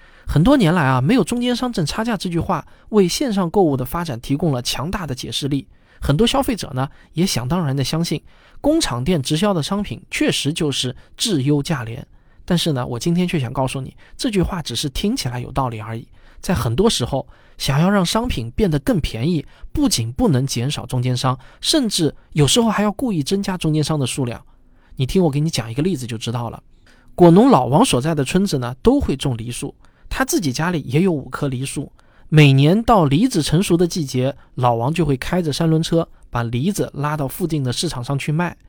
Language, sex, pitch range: Chinese, male, 130-185 Hz